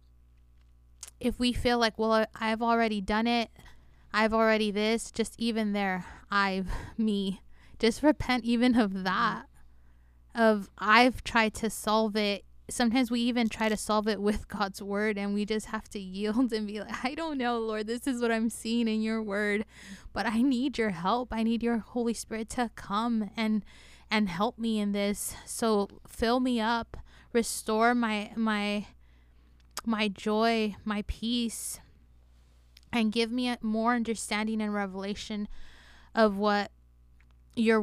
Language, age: English, 20-39